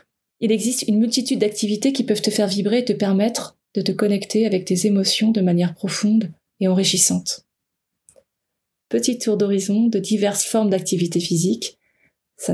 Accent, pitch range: French, 190-220 Hz